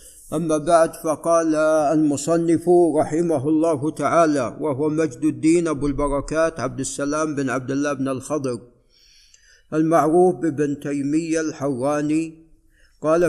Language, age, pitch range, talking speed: Arabic, 50-69, 145-170 Hz, 110 wpm